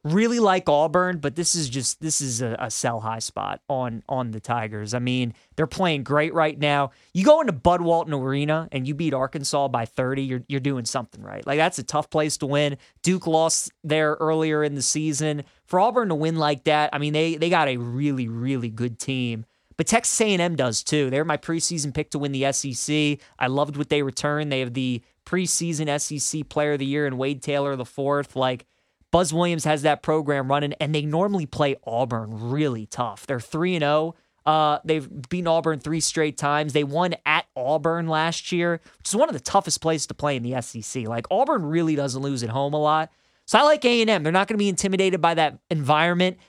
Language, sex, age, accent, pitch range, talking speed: English, male, 20-39, American, 140-170 Hz, 215 wpm